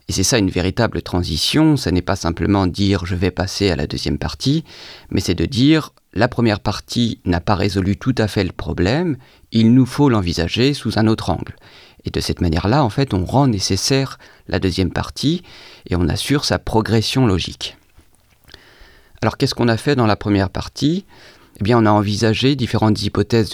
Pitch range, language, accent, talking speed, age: 90-120 Hz, French, French, 195 wpm, 40-59